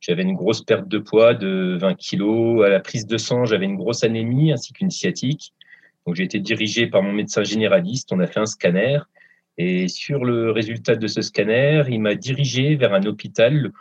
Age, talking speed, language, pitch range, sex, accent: 30-49, 205 wpm, French, 110-155 Hz, male, French